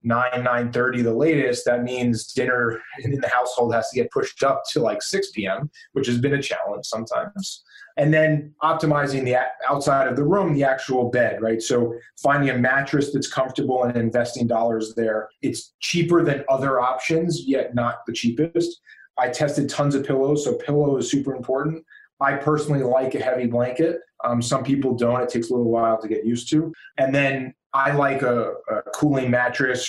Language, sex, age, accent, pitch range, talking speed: English, male, 30-49, American, 120-145 Hz, 190 wpm